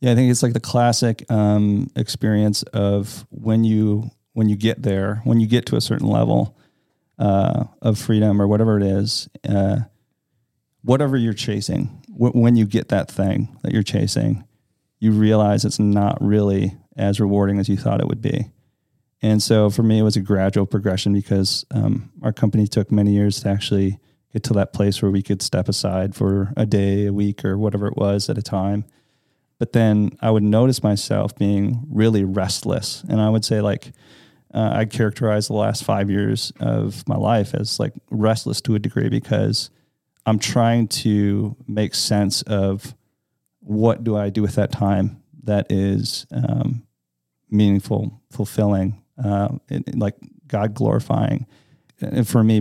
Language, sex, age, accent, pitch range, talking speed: English, male, 40-59, American, 100-120 Hz, 175 wpm